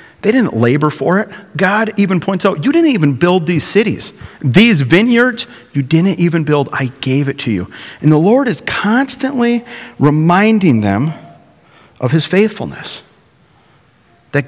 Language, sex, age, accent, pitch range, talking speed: English, male, 40-59, American, 125-175 Hz, 155 wpm